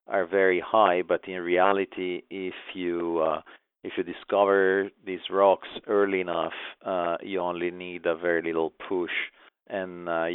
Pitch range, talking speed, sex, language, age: 85-95 Hz, 150 wpm, male, English, 50-69